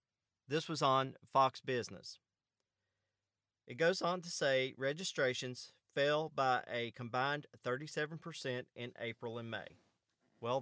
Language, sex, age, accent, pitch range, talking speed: English, male, 40-59, American, 125-155 Hz, 120 wpm